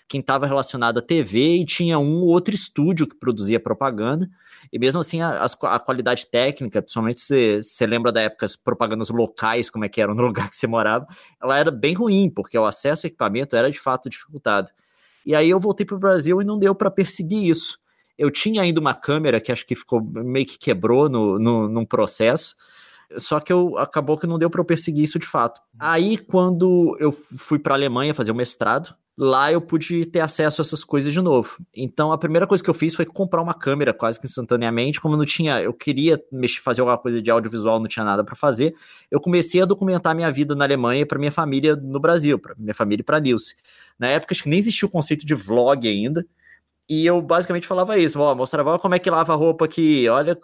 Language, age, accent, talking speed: Portuguese, 20-39, Brazilian, 225 wpm